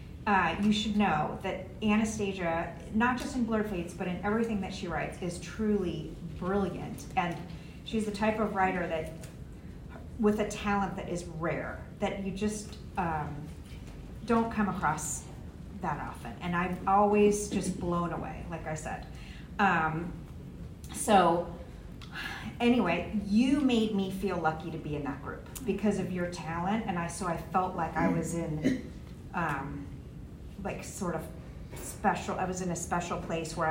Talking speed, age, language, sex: 160 wpm, 40-59, English, female